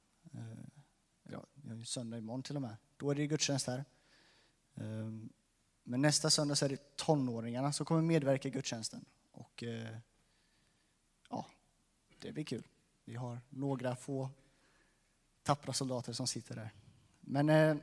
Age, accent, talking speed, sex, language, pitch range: 30-49, native, 140 wpm, male, Swedish, 120-145 Hz